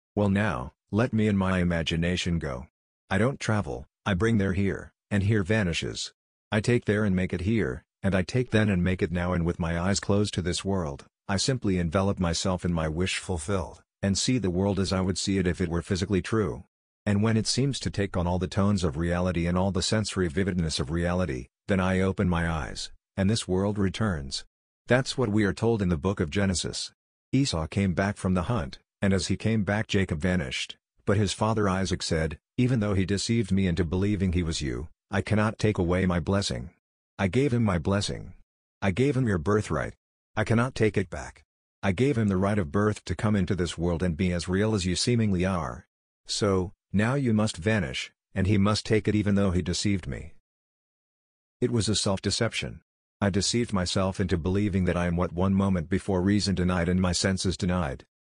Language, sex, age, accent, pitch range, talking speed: English, male, 50-69, American, 90-105 Hz, 215 wpm